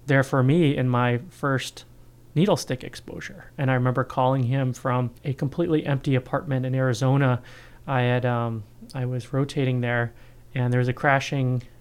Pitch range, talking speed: 125-135 Hz, 170 wpm